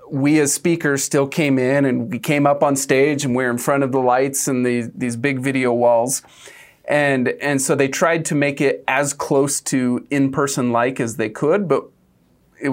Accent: American